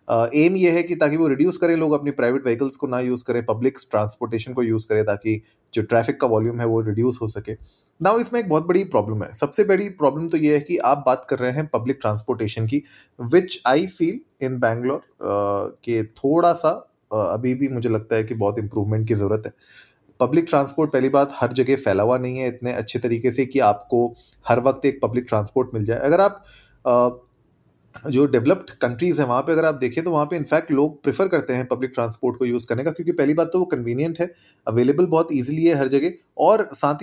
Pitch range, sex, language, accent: 110-150 Hz, male, Hindi, native